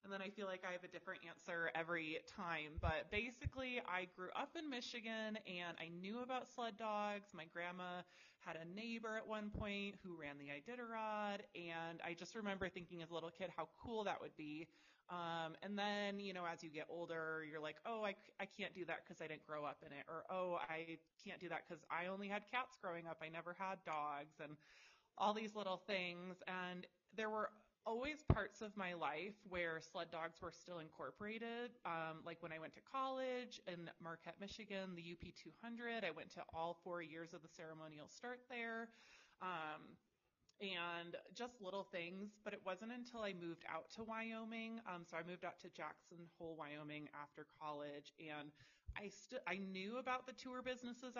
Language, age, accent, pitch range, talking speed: English, 20-39, American, 165-215 Hz, 195 wpm